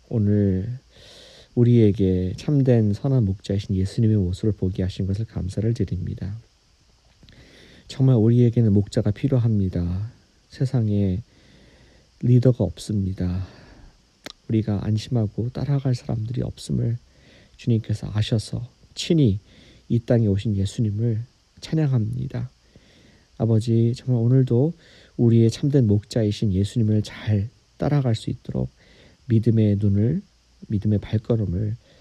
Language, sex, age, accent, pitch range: Korean, male, 40-59, native, 100-125 Hz